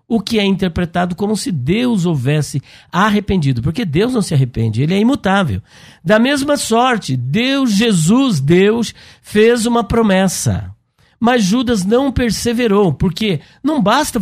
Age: 60-79